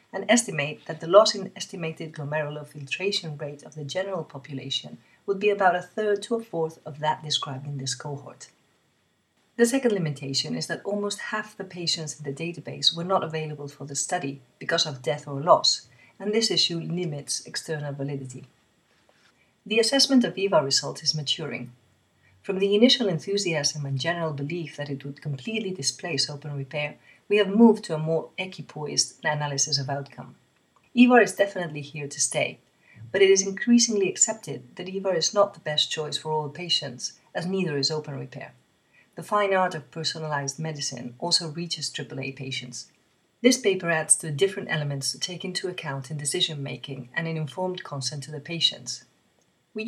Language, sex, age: English, female, 40-59